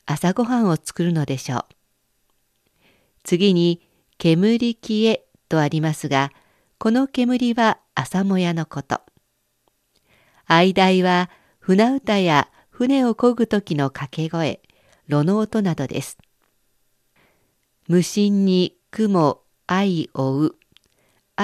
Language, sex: Japanese, female